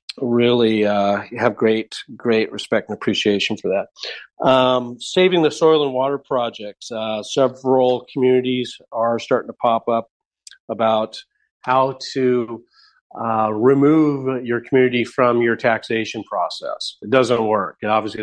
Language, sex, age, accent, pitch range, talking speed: English, male, 40-59, American, 110-130 Hz, 135 wpm